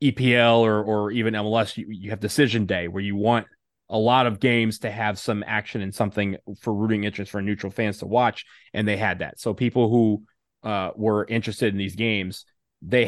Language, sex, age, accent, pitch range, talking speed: English, male, 20-39, American, 100-120 Hz, 205 wpm